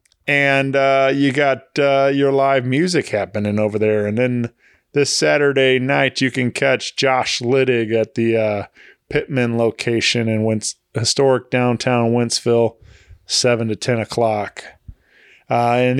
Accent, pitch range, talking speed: American, 110-135 Hz, 130 wpm